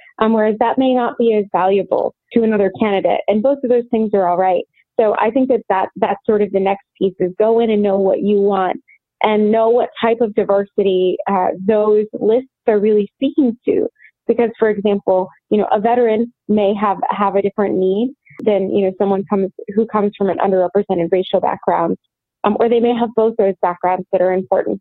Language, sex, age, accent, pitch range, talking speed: English, female, 20-39, American, 195-230 Hz, 210 wpm